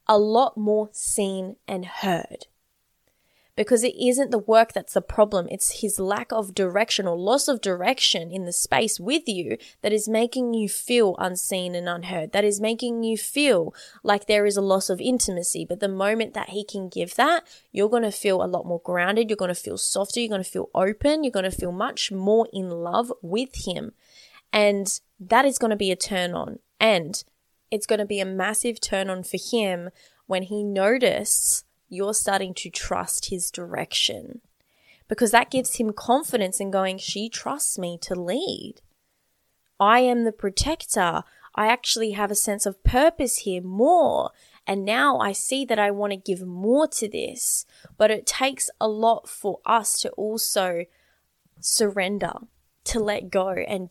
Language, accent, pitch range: English, Australian, 190-230 Hz